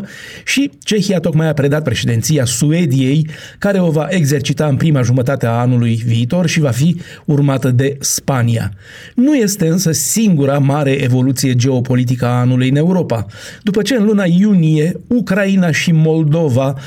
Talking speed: 150 wpm